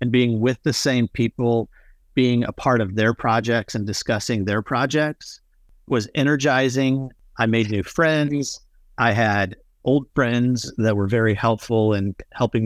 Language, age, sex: English, 40-59, male